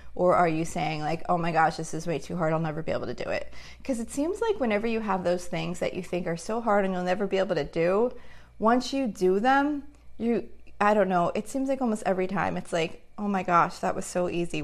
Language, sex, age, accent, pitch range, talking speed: English, female, 30-49, American, 165-210 Hz, 265 wpm